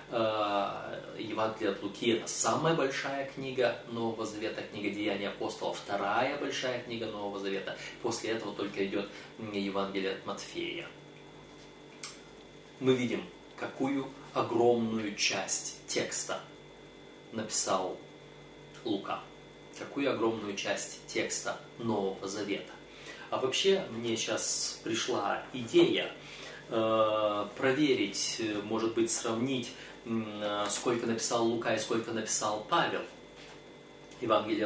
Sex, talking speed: male, 95 wpm